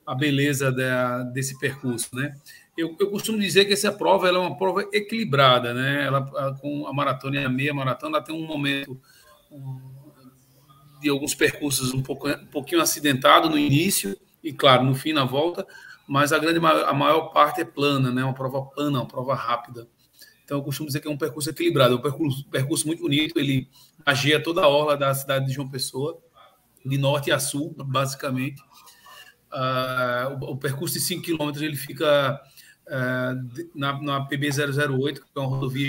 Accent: Brazilian